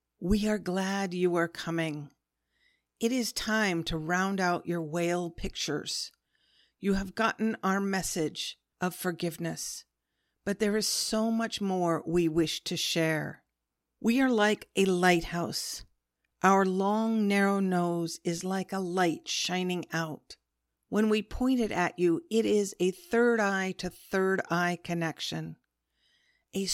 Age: 50-69